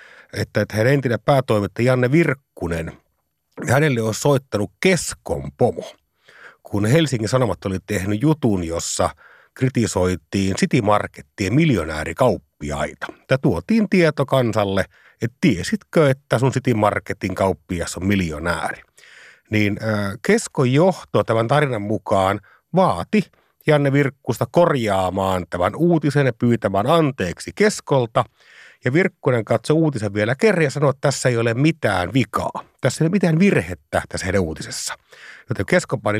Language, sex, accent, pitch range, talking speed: Finnish, male, native, 100-155 Hz, 120 wpm